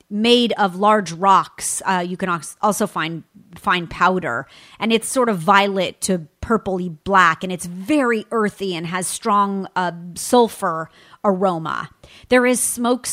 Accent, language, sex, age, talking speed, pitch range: American, English, female, 30-49, 145 wpm, 180-240 Hz